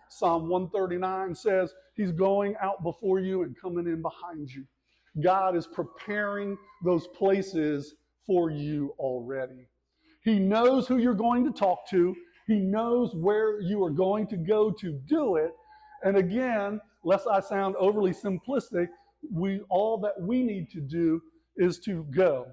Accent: American